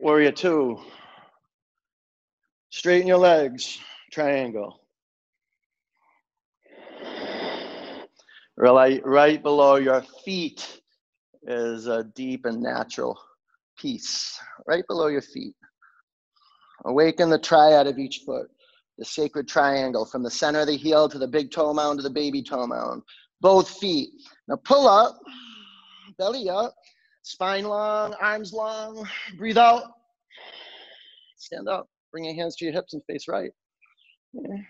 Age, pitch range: 30-49, 130-215 Hz